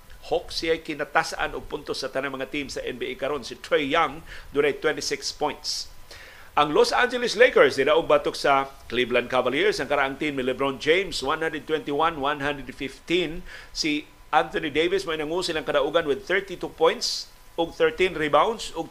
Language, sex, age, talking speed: Filipino, male, 50-69, 145 wpm